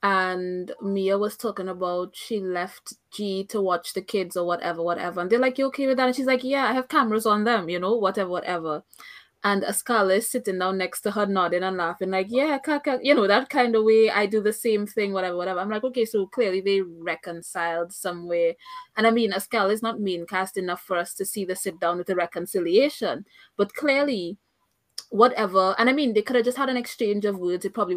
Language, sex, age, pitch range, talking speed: English, female, 20-39, 180-225 Hz, 230 wpm